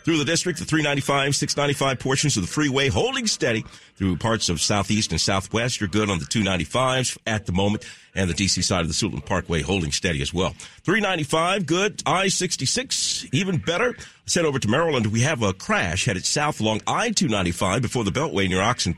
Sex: male